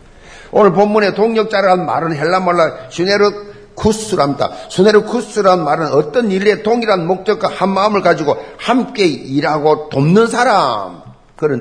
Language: Korean